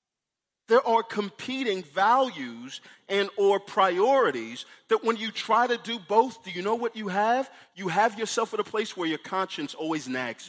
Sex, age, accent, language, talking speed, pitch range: male, 40-59, American, English, 175 wpm, 155-235 Hz